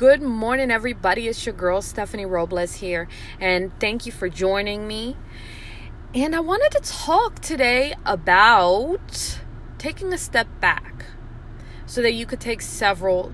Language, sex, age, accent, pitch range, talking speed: English, female, 20-39, American, 190-260 Hz, 145 wpm